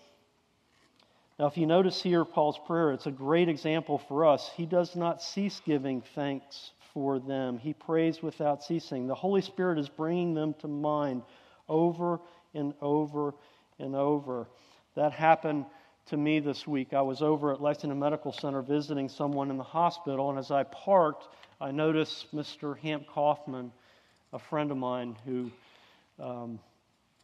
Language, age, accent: English, 50-69, American